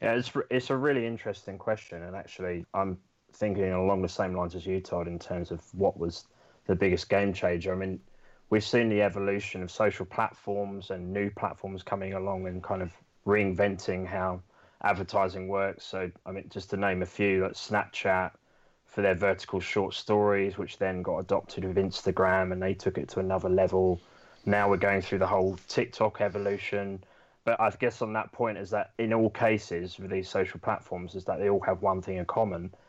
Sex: male